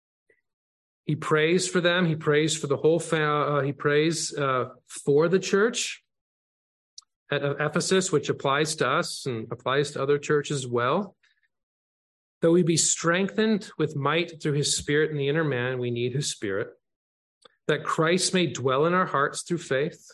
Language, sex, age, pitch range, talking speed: English, male, 40-59, 135-170 Hz, 165 wpm